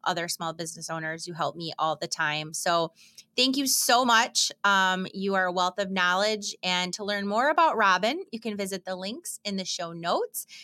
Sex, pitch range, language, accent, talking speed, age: female, 180-230 Hz, English, American, 210 wpm, 30-49